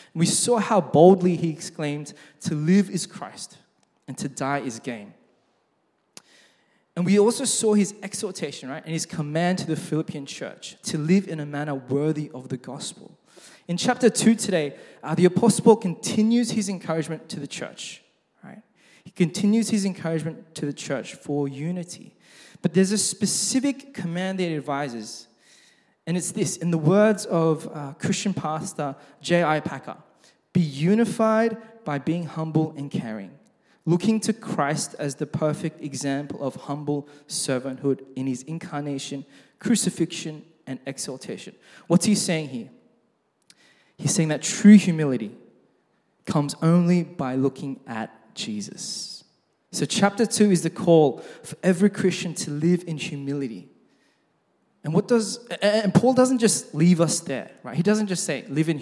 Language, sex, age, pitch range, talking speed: English, male, 20-39, 145-200 Hz, 155 wpm